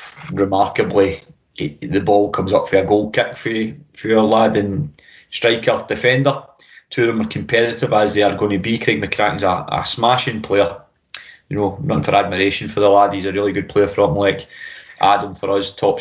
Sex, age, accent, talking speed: male, 20-39, British, 200 wpm